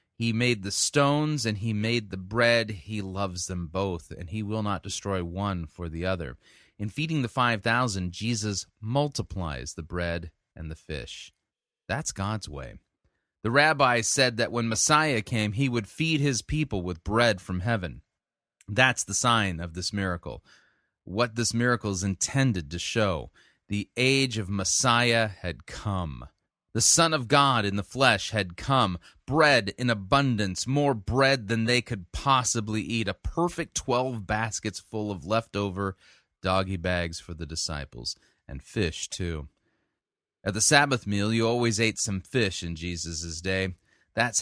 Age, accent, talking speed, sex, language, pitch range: 30-49, American, 160 wpm, male, English, 95-120 Hz